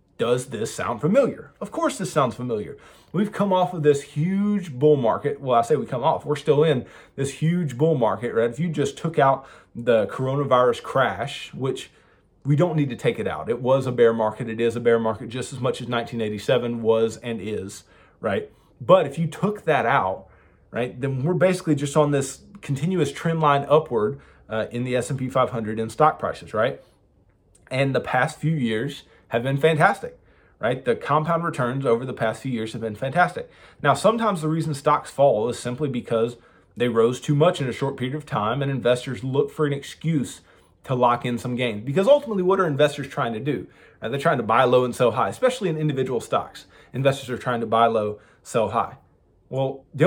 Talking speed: 205 wpm